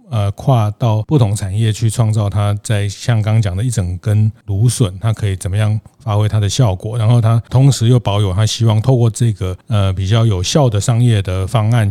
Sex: male